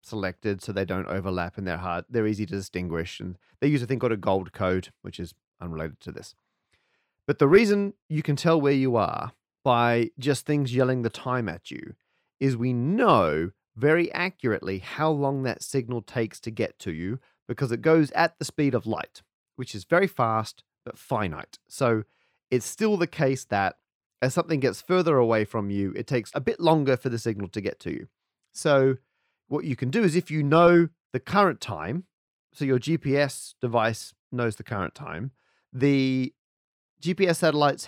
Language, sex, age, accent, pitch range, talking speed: English, male, 30-49, Australian, 110-145 Hz, 190 wpm